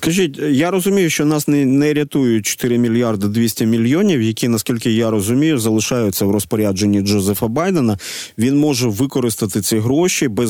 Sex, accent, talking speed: male, native, 155 wpm